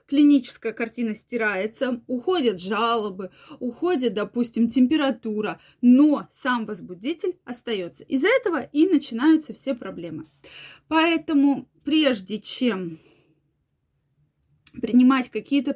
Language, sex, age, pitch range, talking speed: Russian, female, 20-39, 220-285 Hz, 90 wpm